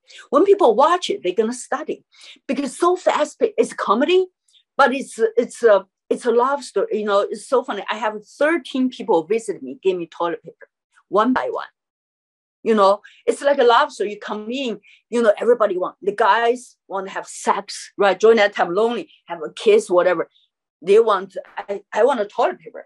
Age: 50-69